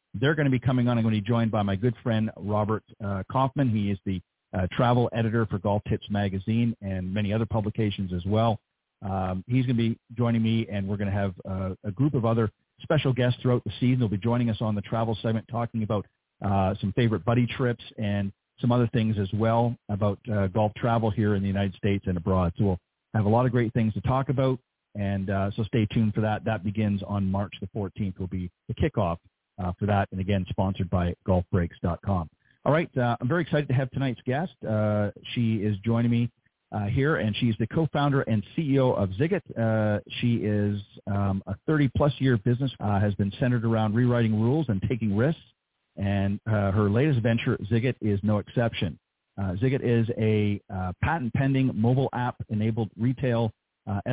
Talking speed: 210 wpm